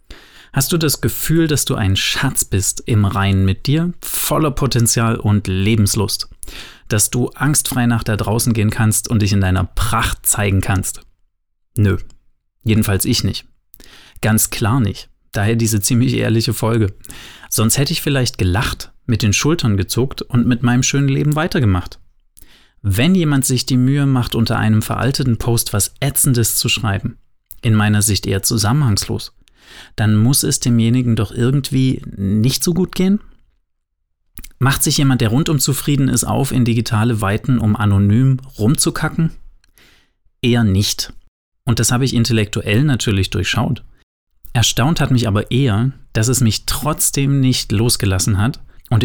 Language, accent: German, German